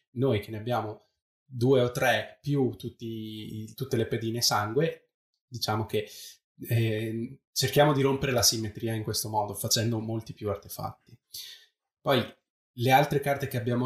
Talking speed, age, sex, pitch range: 145 wpm, 20-39, male, 110-130 Hz